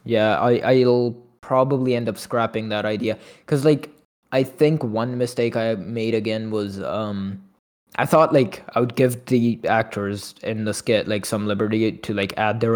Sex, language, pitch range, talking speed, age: male, English, 105-120 Hz, 175 wpm, 20-39